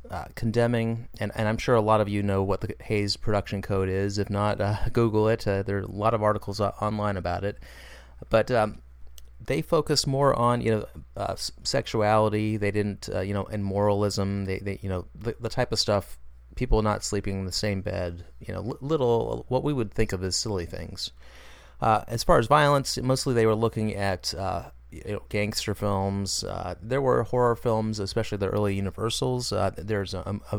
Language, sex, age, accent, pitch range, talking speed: English, male, 30-49, American, 95-115 Hz, 200 wpm